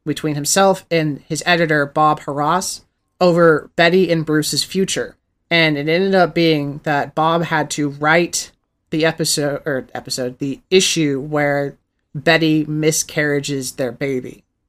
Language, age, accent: English, 30-49, American